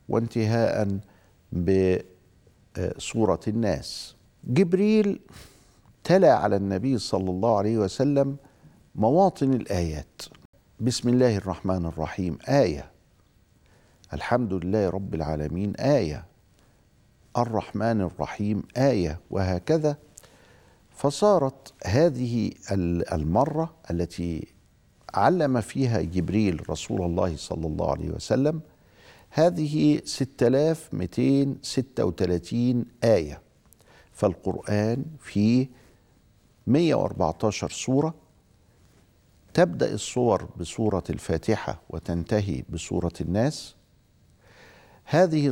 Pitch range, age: 90-130 Hz, 50-69